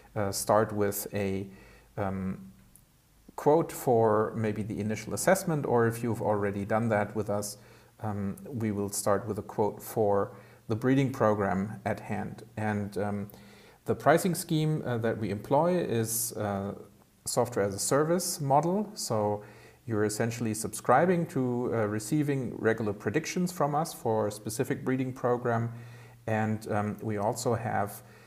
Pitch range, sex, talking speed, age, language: 105-120 Hz, male, 145 wpm, 50-69, English